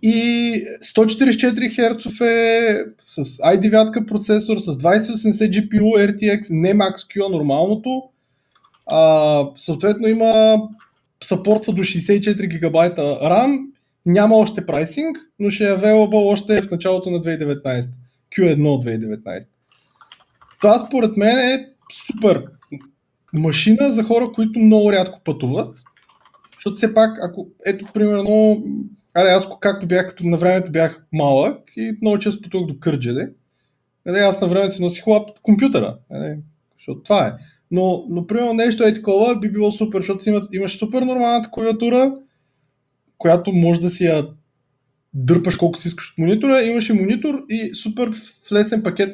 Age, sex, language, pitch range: 20-39, male, Bulgarian, 160-220 Hz